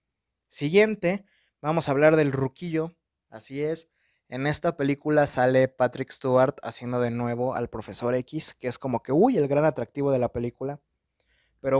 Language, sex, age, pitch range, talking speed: Spanish, male, 20-39, 135-180 Hz, 165 wpm